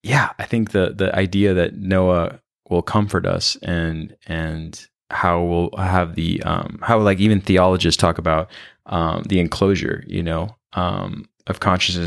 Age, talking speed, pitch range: 20-39, 160 wpm, 85-100 Hz